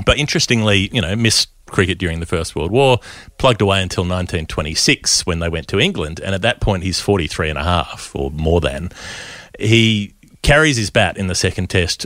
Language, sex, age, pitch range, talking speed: English, male, 30-49, 85-105 Hz, 200 wpm